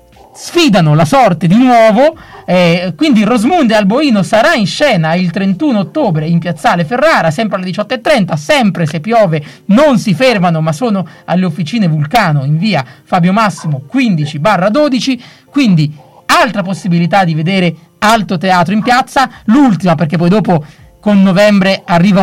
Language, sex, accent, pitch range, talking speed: Italian, male, native, 160-210 Hz, 145 wpm